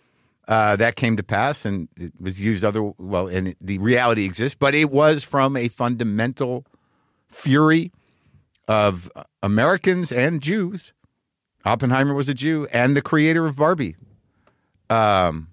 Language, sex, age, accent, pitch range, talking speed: English, male, 50-69, American, 105-140 Hz, 140 wpm